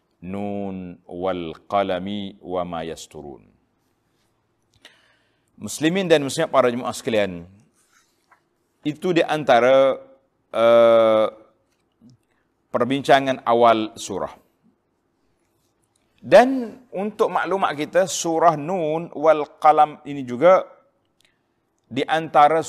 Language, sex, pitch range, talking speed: Malay, male, 120-160 Hz, 75 wpm